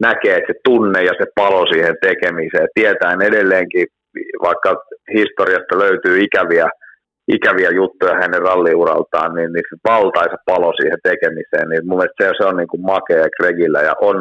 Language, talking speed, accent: Finnish, 155 wpm, native